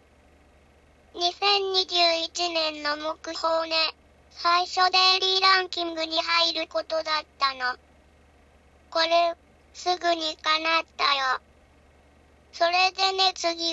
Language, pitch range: Japanese, 310-360 Hz